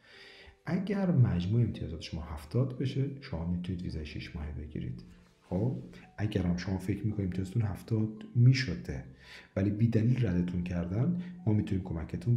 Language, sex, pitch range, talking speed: Persian, male, 85-120 Hz, 135 wpm